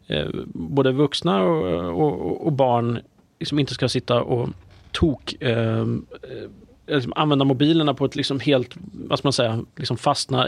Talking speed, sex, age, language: 165 wpm, male, 30-49, Swedish